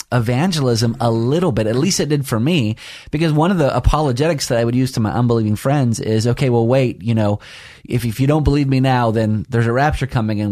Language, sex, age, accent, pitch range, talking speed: English, male, 30-49, American, 115-145 Hz, 240 wpm